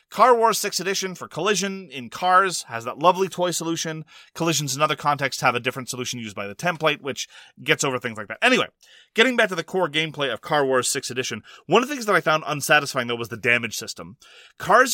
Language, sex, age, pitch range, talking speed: English, male, 30-49, 130-200 Hz, 230 wpm